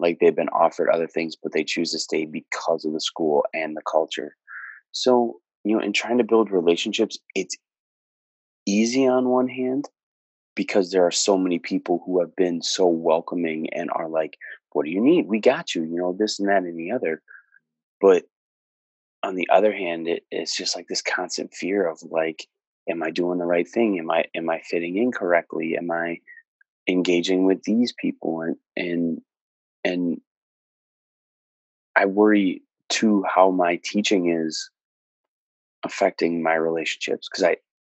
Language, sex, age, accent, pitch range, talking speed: English, male, 30-49, American, 80-105 Hz, 170 wpm